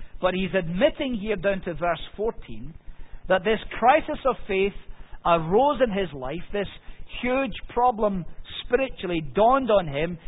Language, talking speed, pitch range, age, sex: English, 140 wpm, 145-230 Hz, 50-69, male